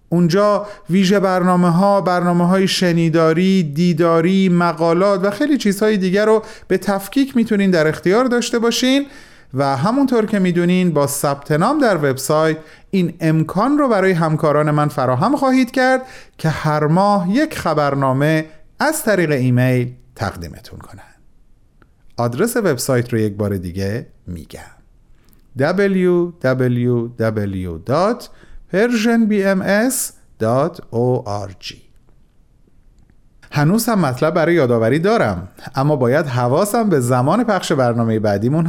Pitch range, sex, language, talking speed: 130-205 Hz, male, Persian, 110 wpm